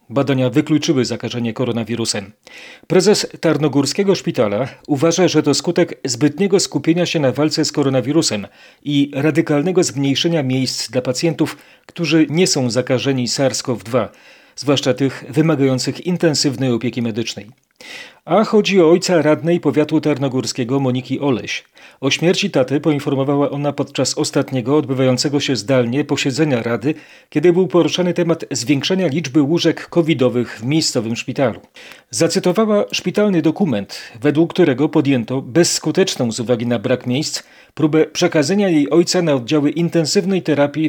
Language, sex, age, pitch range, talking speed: Polish, male, 40-59, 125-165 Hz, 130 wpm